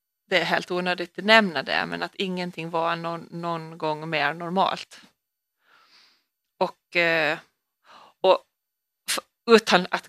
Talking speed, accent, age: 120 wpm, Swedish, 30-49